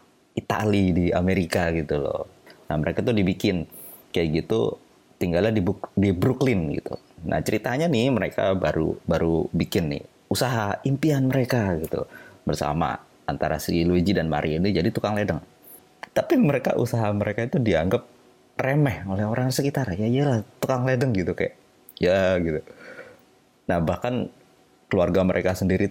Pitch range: 90-125 Hz